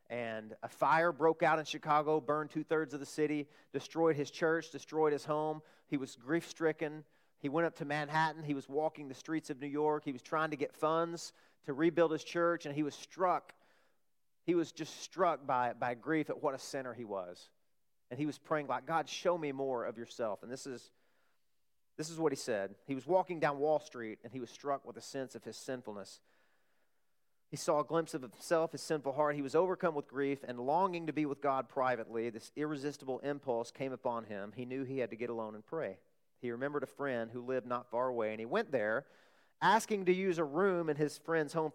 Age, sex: 40-59, male